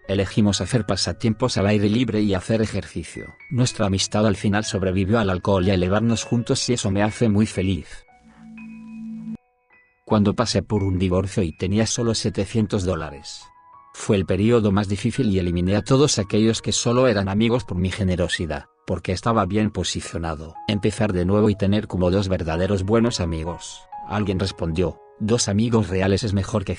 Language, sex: Spanish, male